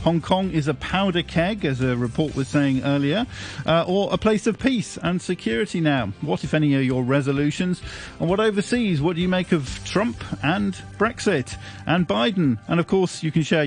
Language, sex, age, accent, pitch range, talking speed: English, male, 40-59, British, 125-160 Hz, 200 wpm